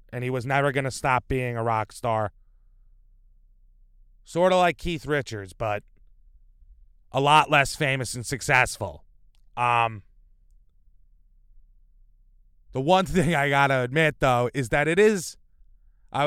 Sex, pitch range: male, 105-145 Hz